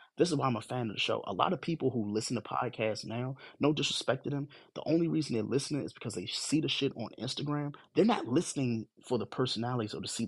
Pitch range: 110-130 Hz